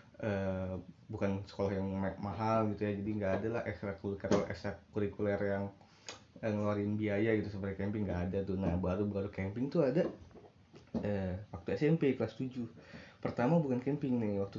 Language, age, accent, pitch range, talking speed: Indonesian, 20-39, native, 100-120 Hz, 175 wpm